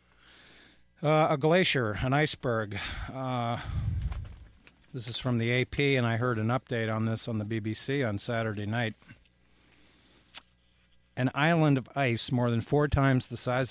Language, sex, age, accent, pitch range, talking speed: English, male, 50-69, American, 105-130 Hz, 150 wpm